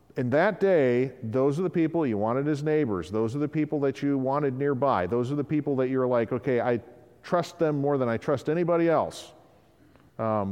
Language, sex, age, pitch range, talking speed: English, male, 50-69, 110-145 Hz, 210 wpm